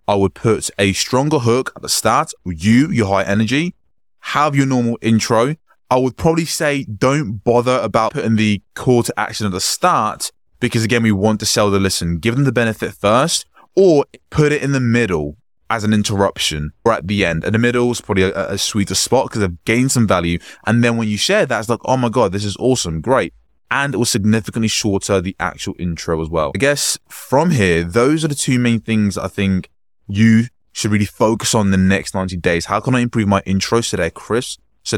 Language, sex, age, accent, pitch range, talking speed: English, male, 20-39, British, 95-120 Hz, 220 wpm